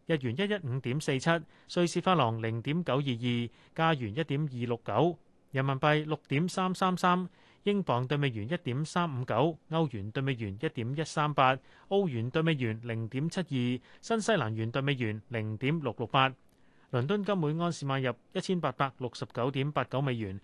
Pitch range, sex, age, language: 125-170 Hz, male, 30-49, Chinese